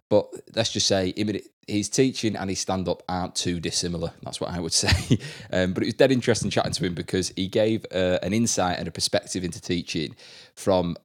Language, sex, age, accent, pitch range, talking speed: English, male, 20-39, British, 85-95 Hz, 205 wpm